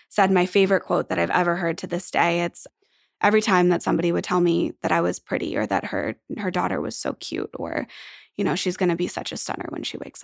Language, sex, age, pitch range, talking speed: English, female, 20-39, 180-210 Hz, 260 wpm